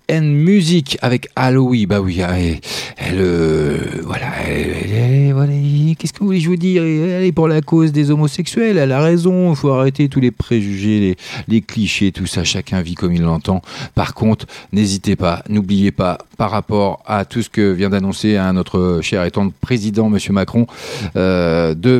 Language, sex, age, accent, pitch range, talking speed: French, male, 40-59, French, 100-130 Hz, 170 wpm